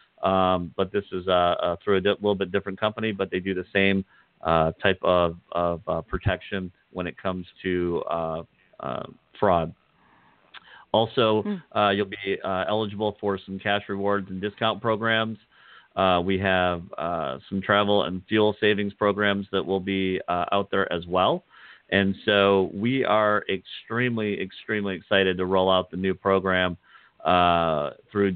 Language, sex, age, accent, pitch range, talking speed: English, male, 40-59, American, 95-105 Hz, 160 wpm